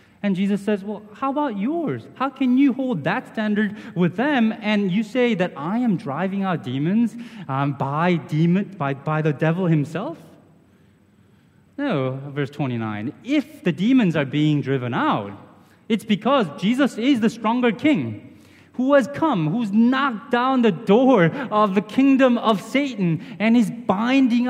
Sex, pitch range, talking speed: male, 140-220 Hz, 160 wpm